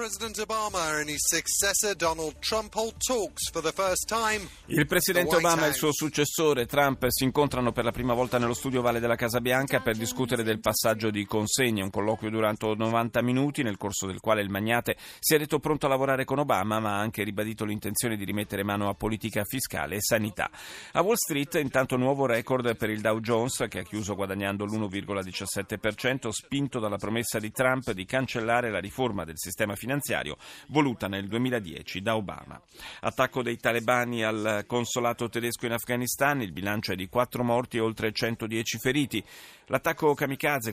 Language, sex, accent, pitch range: Italian, male, native, 105-135 Hz